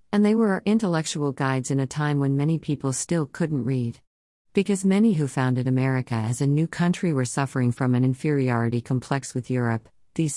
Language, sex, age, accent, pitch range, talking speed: English, female, 50-69, American, 130-150 Hz, 190 wpm